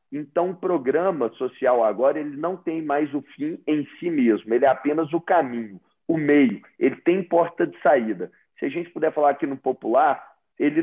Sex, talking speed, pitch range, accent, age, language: male, 190 wpm, 150-205 Hz, Brazilian, 40-59, Portuguese